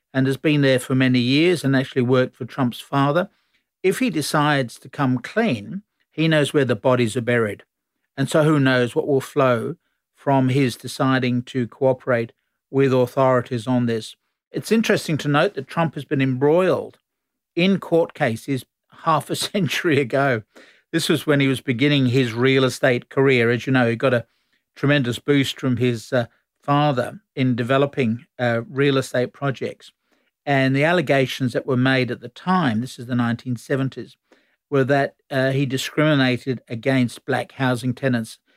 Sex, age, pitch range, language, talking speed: male, 50-69, 125-145 Hz, English, 170 wpm